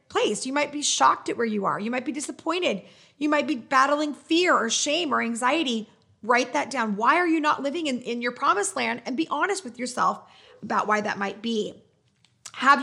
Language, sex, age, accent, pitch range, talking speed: English, female, 30-49, American, 220-290 Hz, 215 wpm